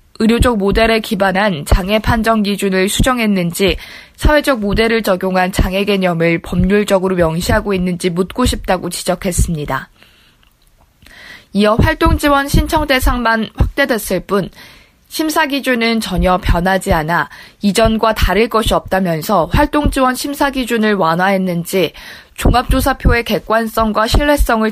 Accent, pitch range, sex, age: native, 185-230 Hz, female, 20-39